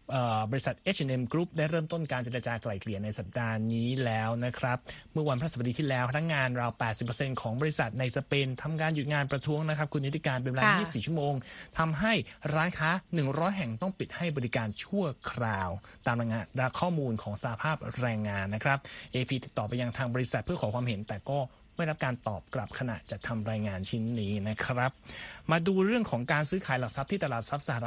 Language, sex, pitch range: Thai, male, 120-160 Hz